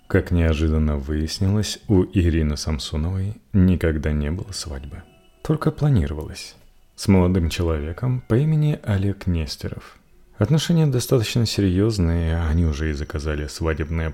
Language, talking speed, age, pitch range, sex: Russian, 115 wpm, 30-49, 80-120 Hz, male